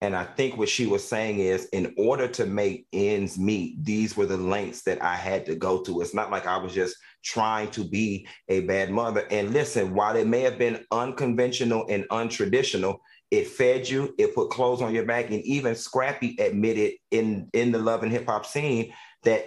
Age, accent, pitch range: 30-49, American, 110-140 Hz